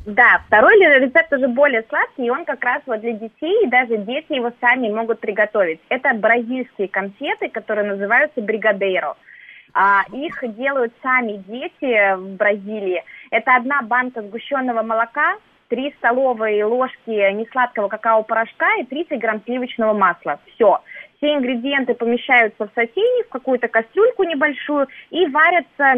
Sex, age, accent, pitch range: female, 20-39, native, 220-285 Hz